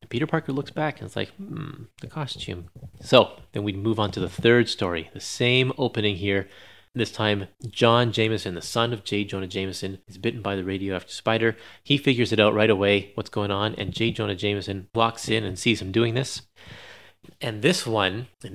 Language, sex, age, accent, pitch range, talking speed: English, male, 30-49, American, 100-120 Hz, 205 wpm